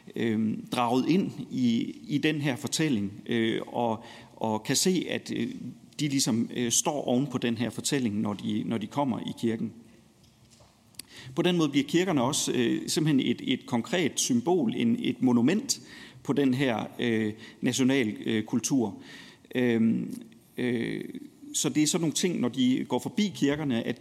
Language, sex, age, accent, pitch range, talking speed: Danish, male, 40-59, native, 120-165 Hz, 165 wpm